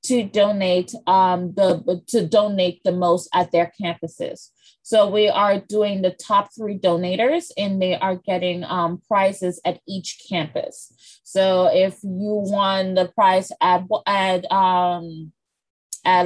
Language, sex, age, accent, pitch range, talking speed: English, female, 20-39, American, 185-215 Hz, 140 wpm